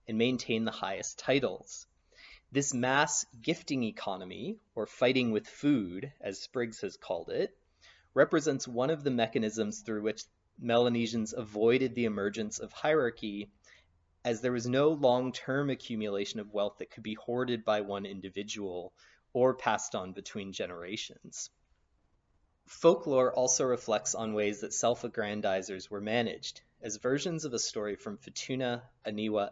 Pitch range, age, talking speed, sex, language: 105-130 Hz, 30-49, 140 wpm, male, English